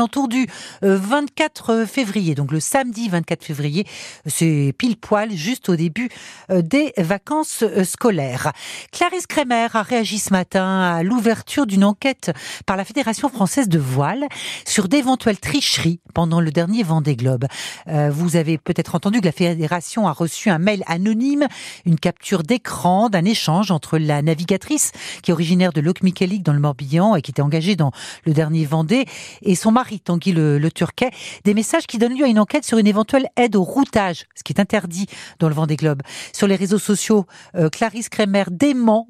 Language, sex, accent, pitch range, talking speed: French, female, French, 165-225 Hz, 180 wpm